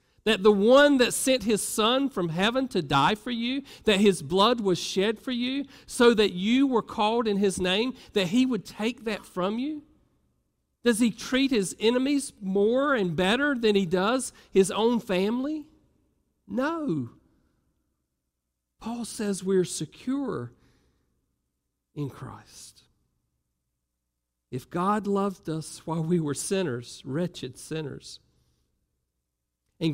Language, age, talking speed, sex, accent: English, 50-69, 135 wpm, male, American